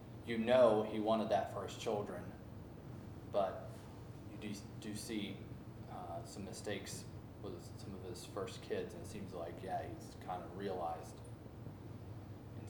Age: 20-39